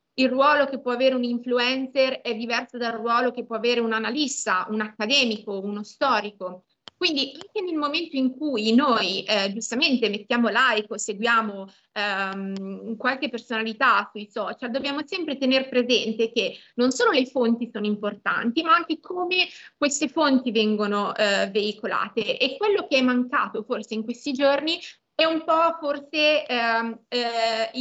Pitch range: 220-275 Hz